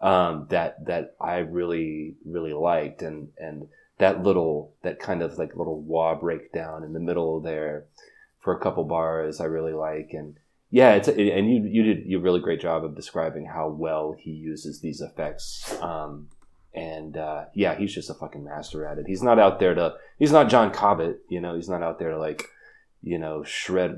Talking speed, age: 200 wpm, 30-49